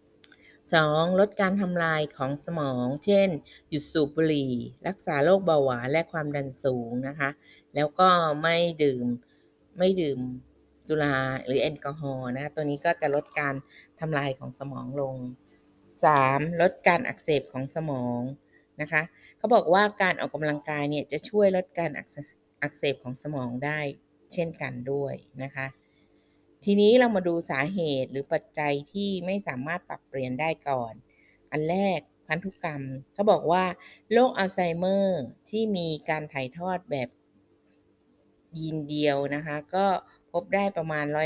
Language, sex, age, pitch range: Thai, female, 20-39, 140-180 Hz